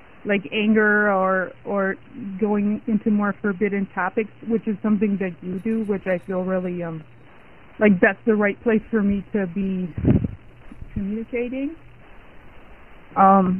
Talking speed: 130 wpm